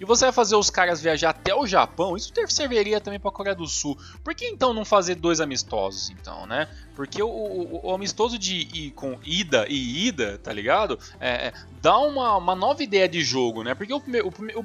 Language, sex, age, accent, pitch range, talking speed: Portuguese, male, 20-39, Brazilian, 140-200 Hz, 215 wpm